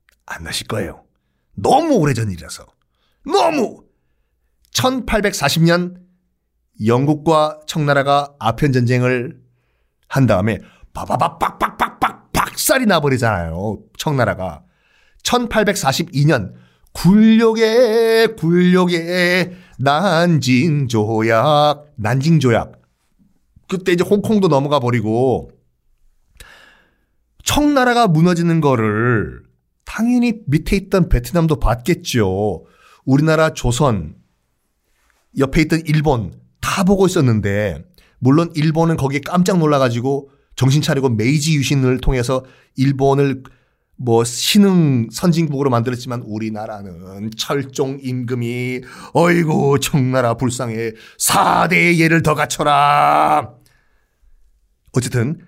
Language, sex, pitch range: Korean, male, 115-165 Hz